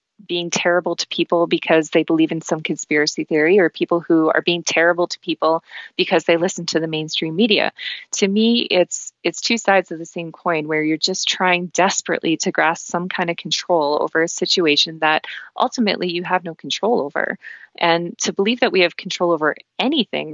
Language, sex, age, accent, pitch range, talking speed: English, female, 20-39, American, 155-185 Hz, 195 wpm